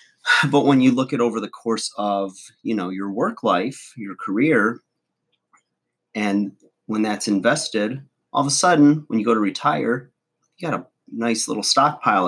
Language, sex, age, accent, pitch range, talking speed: English, male, 30-49, American, 95-120 Hz, 170 wpm